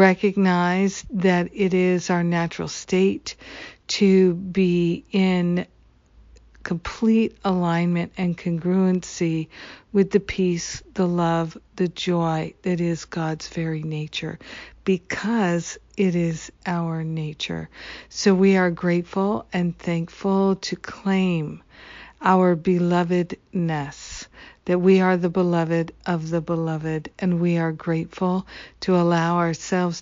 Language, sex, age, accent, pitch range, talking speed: English, female, 50-69, American, 170-190 Hz, 110 wpm